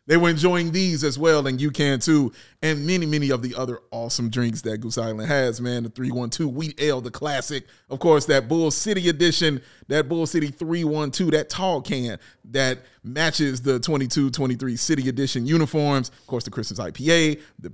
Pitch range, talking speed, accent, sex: 125-160 Hz, 185 wpm, American, male